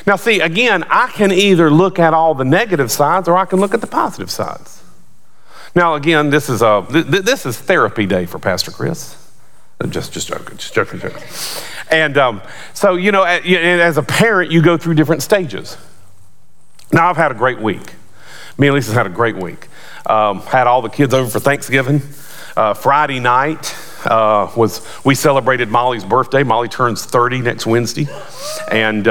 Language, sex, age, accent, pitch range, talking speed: English, male, 40-59, American, 110-160 Hz, 190 wpm